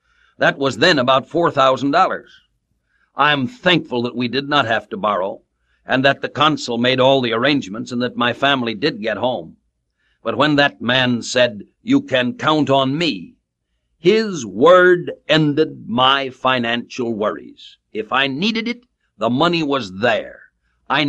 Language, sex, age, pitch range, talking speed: English, male, 60-79, 115-150 Hz, 155 wpm